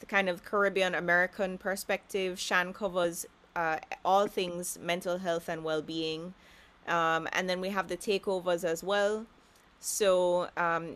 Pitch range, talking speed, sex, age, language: 165-195 Hz, 135 wpm, female, 20-39, English